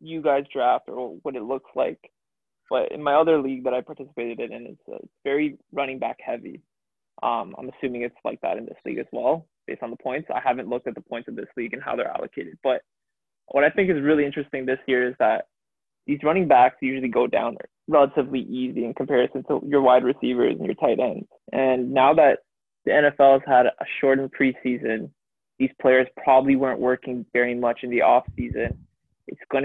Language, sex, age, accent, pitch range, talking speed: English, male, 20-39, American, 130-145 Hz, 205 wpm